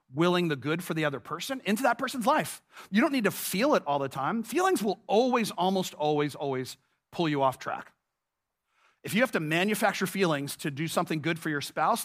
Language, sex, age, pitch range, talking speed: English, male, 40-59, 150-205 Hz, 215 wpm